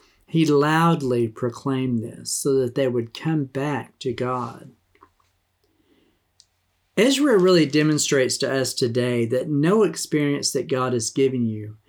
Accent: American